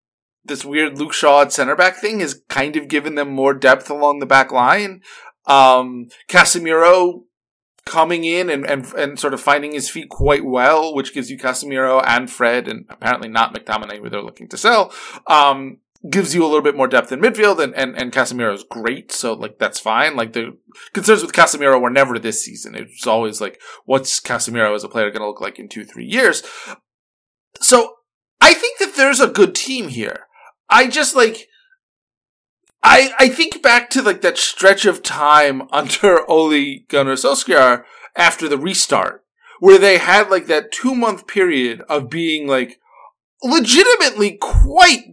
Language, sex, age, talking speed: English, male, 20-39, 180 wpm